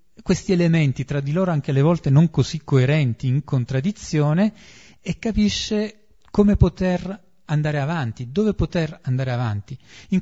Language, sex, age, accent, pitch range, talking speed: Italian, male, 40-59, native, 125-175 Hz, 140 wpm